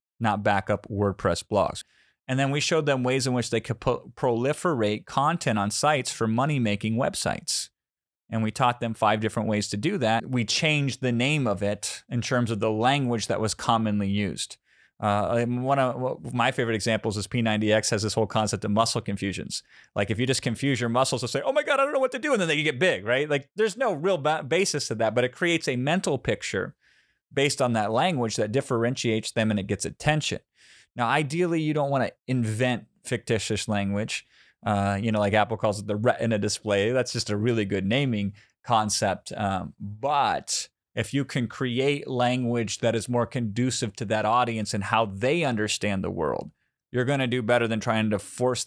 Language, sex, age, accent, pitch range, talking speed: English, male, 30-49, American, 105-130 Hz, 200 wpm